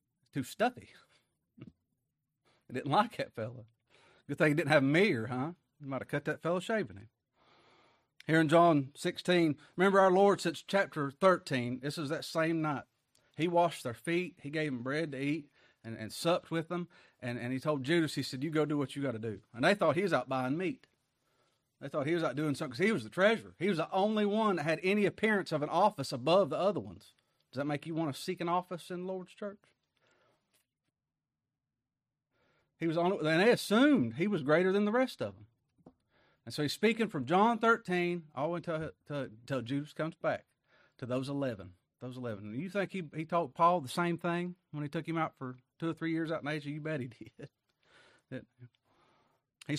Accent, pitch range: American, 135-180 Hz